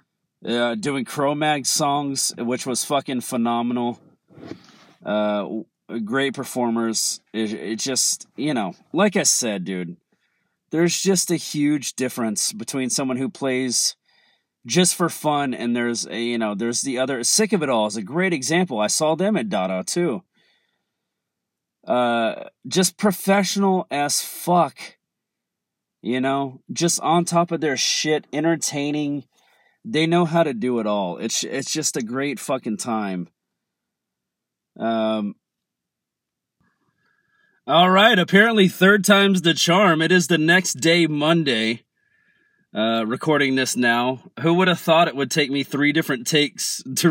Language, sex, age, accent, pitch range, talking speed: English, male, 30-49, American, 120-165 Hz, 140 wpm